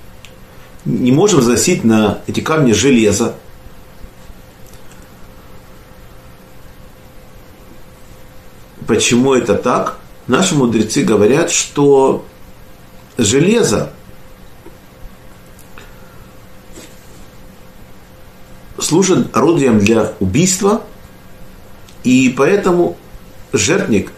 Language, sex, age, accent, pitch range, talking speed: Russian, male, 50-69, native, 105-130 Hz, 55 wpm